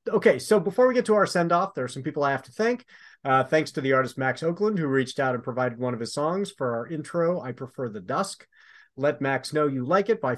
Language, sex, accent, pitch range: English, male, American, 130-170 Hz